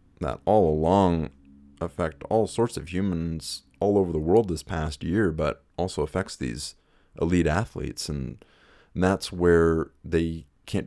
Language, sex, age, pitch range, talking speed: English, male, 30-49, 75-85 Hz, 150 wpm